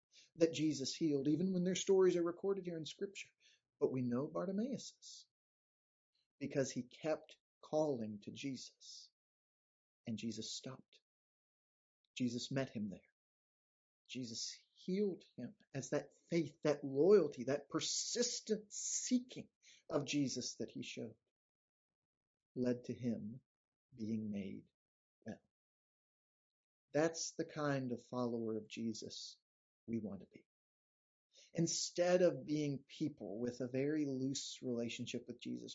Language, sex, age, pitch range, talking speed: English, male, 40-59, 125-165 Hz, 125 wpm